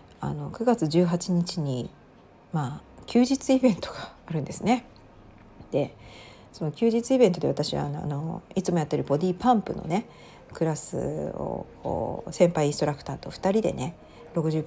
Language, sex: Japanese, female